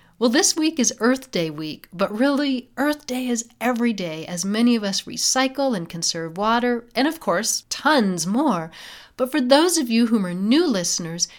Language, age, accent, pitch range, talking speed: English, 40-59, American, 185-255 Hz, 190 wpm